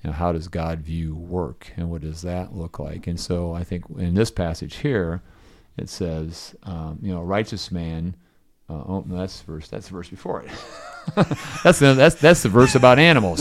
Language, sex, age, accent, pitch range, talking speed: English, male, 40-59, American, 85-105 Hz, 205 wpm